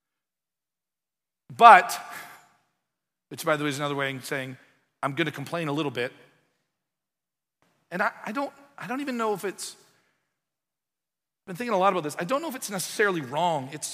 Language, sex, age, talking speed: English, male, 40-59, 170 wpm